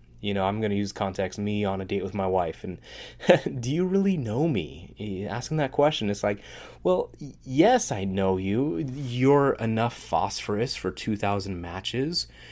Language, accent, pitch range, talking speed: English, American, 100-140 Hz, 175 wpm